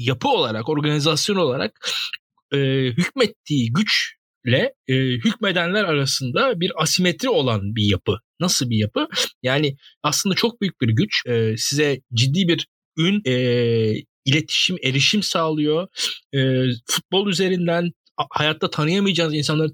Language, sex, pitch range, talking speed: Turkish, male, 140-190 Hz, 120 wpm